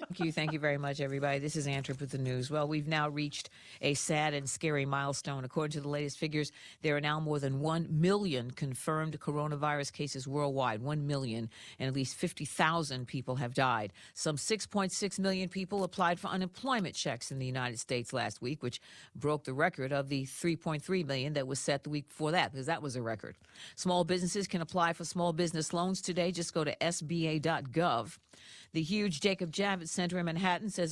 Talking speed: 200 wpm